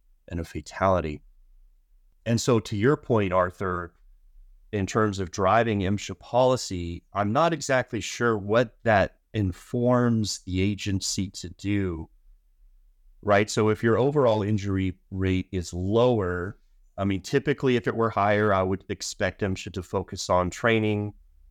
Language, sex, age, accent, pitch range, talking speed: English, male, 30-49, American, 85-105 Hz, 140 wpm